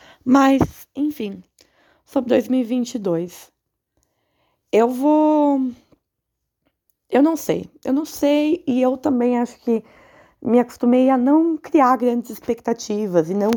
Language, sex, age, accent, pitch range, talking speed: Portuguese, female, 20-39, Brazilian, 195-245 Hz, 115 wpm